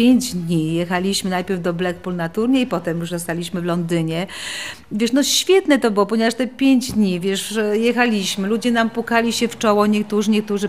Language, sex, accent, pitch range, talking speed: Polish, female, native, 190-240 Hz, 180 wpm